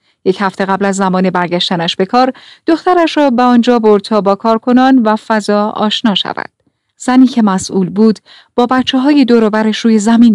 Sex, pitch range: female, 190-255 Hz